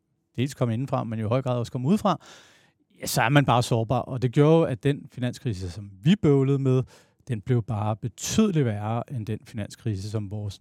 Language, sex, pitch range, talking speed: Danish, male, 115-140 Hz, 205 wpm